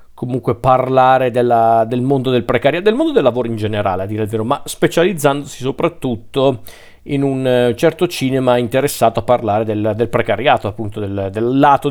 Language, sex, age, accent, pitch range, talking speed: Italian, male, 40-59, native, 115-140 Hz, 165 wpm